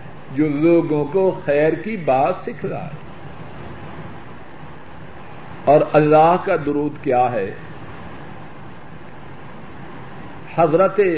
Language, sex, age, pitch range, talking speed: Urdu, male, 50-69, 150-185 Hz, 85 wpm